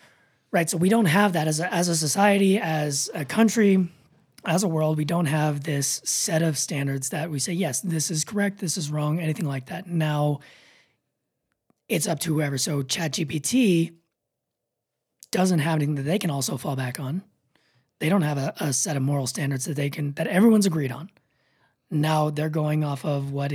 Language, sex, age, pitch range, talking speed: English, male, 20-39, 140-180 Hz, 195 wpm